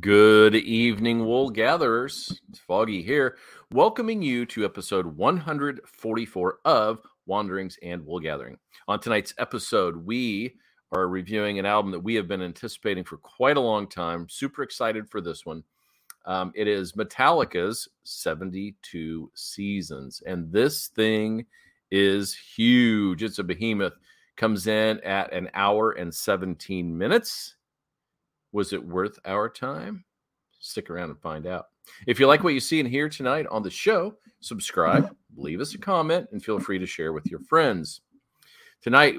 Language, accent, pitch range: English, American, 95-140 Hz